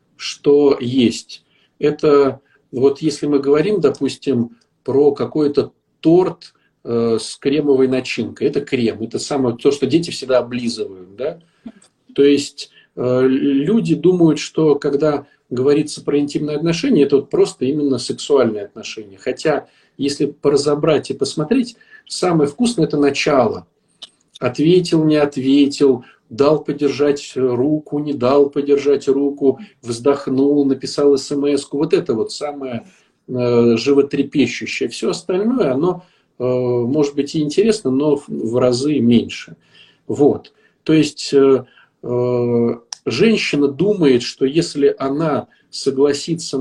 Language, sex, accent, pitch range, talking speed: Russian, male, native, 130-155 Hz, 115 wpm